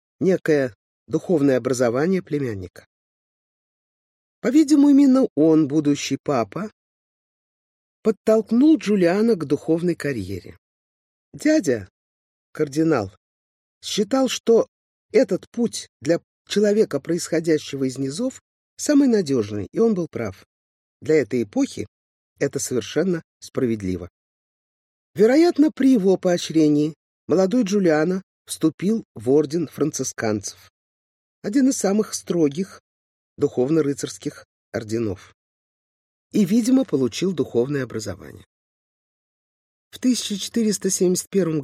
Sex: male